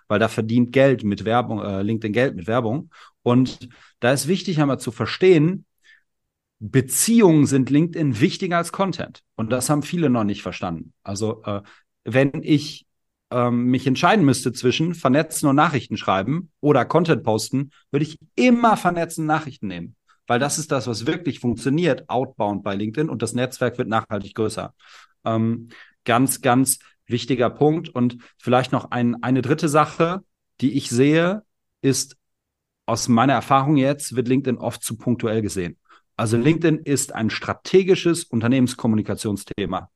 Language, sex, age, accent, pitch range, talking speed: German, male, 40-59, German, 115-155 Hz, 155 wpm